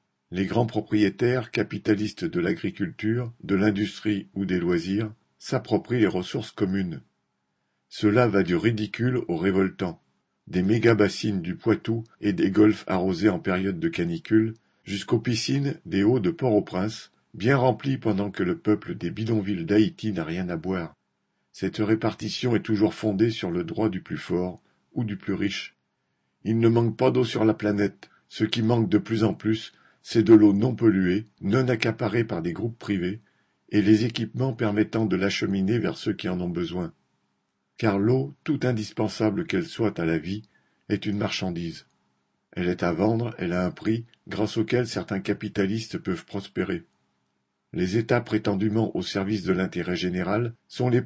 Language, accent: French, French